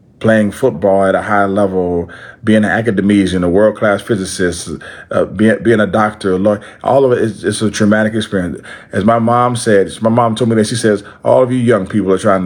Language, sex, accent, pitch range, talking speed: English, male, American, 100-135 Hz, 225 wpm